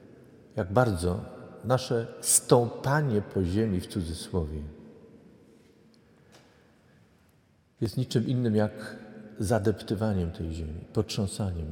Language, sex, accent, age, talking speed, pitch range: Polish, male, native, 50-69, 80 wpm, 100-130 Hz